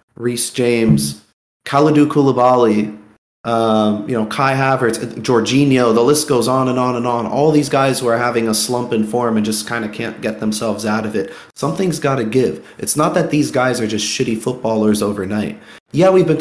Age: 30-49